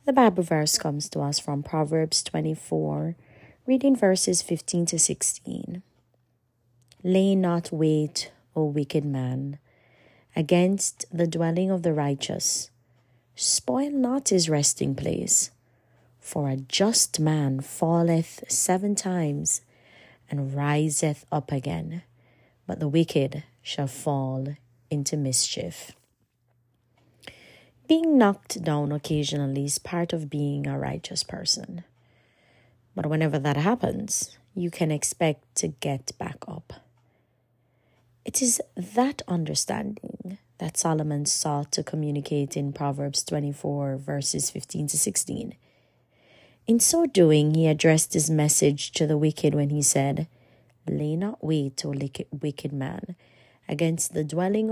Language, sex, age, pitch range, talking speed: English, female, 30-49, 130-170 Hz, 120 wpm